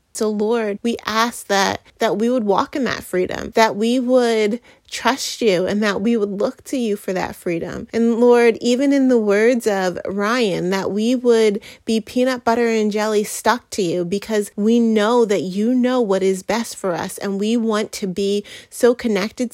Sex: female